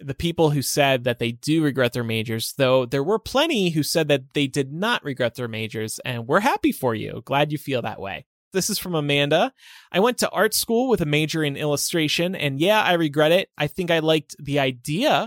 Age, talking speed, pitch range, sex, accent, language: 30-49, 230 wpm, 130-175 Hz, male, American, English